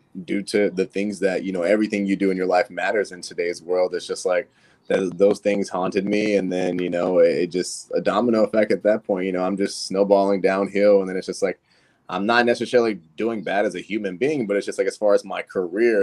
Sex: male